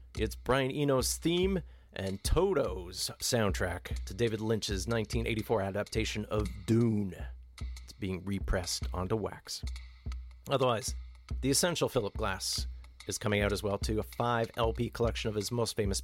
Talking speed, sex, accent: 140 wpm, male, American